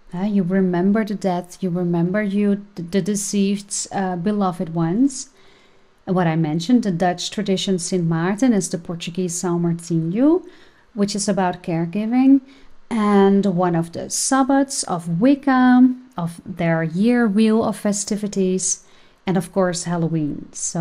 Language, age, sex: English, 40-59, female